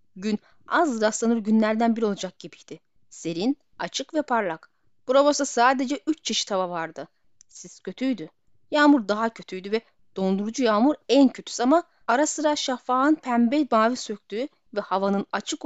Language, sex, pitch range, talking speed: Turkish, female, 205-285 Hz, 140 wpm